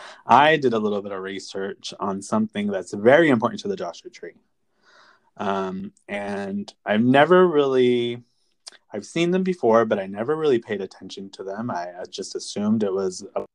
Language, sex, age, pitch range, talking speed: English, male, 30-49, 100-135 Hz, 175 wpm